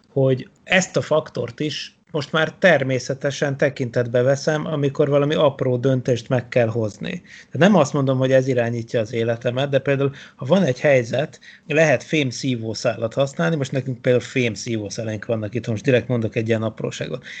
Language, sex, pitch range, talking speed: Hungarian, male, 125-160 Hz, 160 wpm